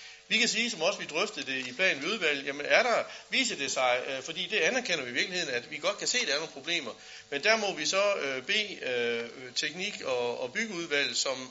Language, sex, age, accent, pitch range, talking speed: Danish, male, 60-79, native, 135-205 Hz, 230 wpm